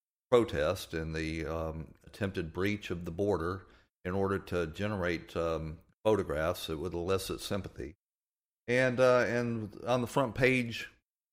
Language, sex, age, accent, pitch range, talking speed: English, male, 50-69, American, 85-105 Hz, 140 wpm